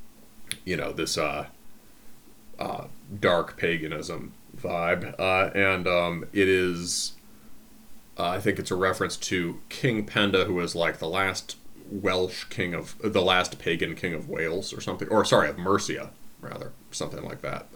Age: 30-49